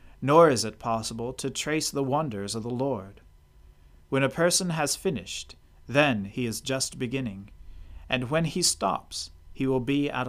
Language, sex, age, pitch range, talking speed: English, male, 40-59, 100-140 Hz, 170 wpm